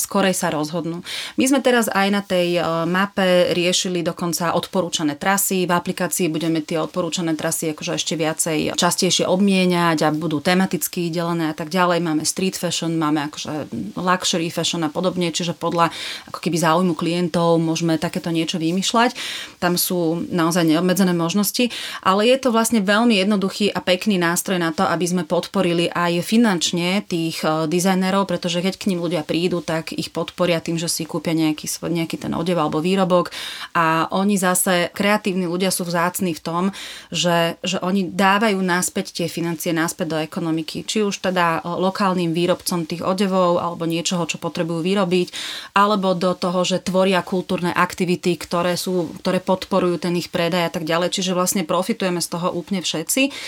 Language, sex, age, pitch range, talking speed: Slovak, female, 30-49, 170-185 Hz, 165 wpm